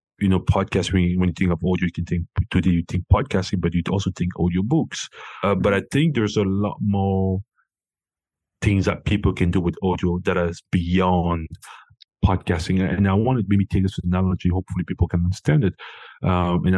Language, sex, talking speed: English, male, 195 wpm